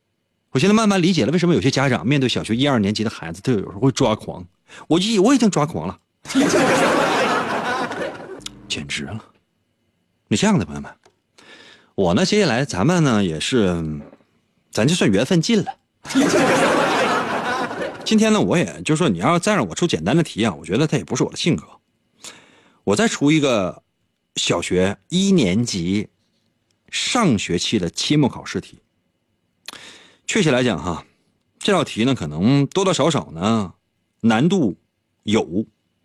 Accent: native